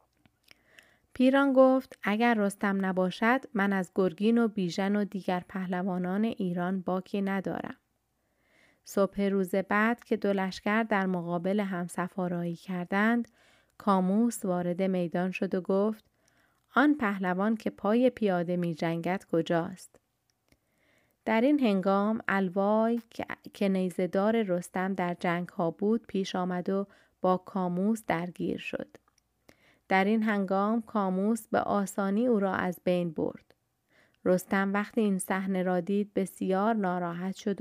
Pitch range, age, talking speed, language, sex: 185-210 Hz, 30-49, 125 wpm, Persian, female